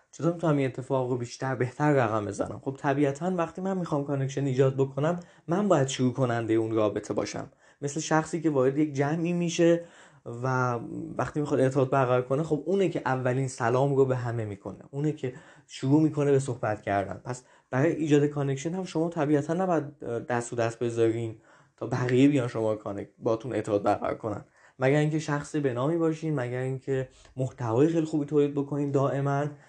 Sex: male